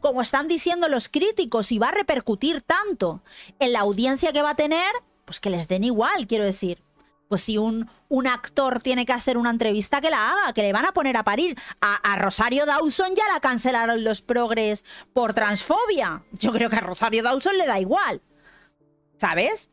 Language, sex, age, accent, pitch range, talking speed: Spanish, female, 30-49, Spanish, 225-300 Hz, 200 wpm